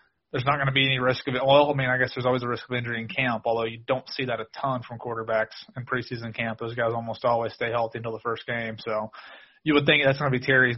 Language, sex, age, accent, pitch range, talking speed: English, male, 30-49, American, 125-140 Hz, 295 wpm